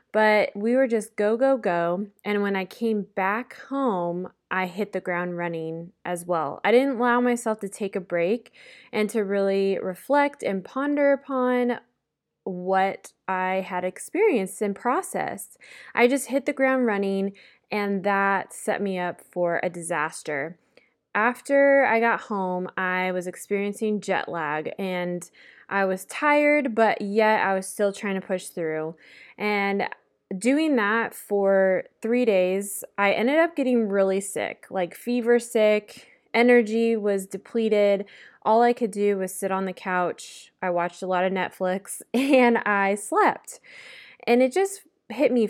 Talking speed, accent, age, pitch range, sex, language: 155 wpm, American, 20-39, 185-240 Hz, female, English